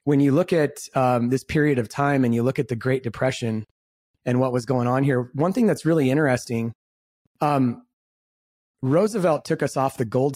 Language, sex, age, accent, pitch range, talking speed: English, male, 30-49, American, 125-155 Hz, 195 wpm